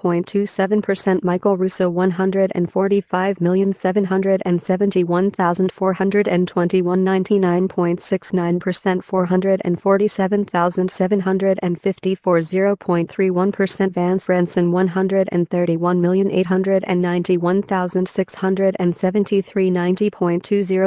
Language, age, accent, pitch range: English, 40-59, American, 180-195 Hz